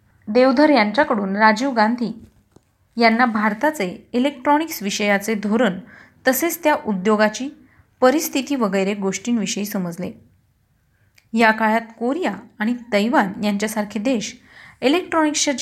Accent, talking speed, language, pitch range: native, 90 wpm, Marathi, 205-265 Hz